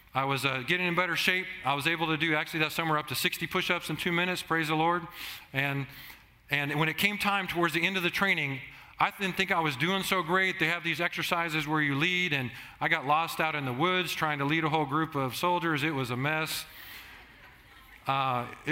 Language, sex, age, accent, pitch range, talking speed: English, male, 40-59, American, 130-165 Hz, 235 wpm